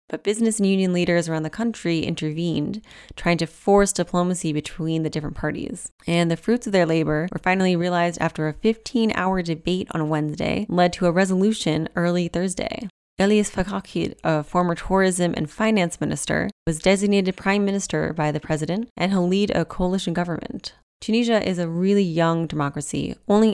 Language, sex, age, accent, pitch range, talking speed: English, female, 20-39, American, 150-185 Hz, 170 wpm